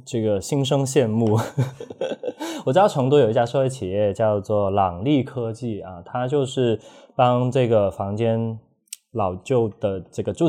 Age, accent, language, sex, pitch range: 20-39, native, Chinese, male, 105-135 Hz